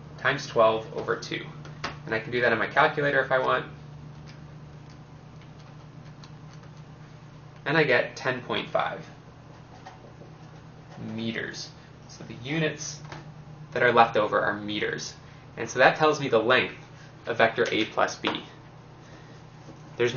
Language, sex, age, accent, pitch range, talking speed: English, male, 20-39, American, 120-150 Hz, 125 wpm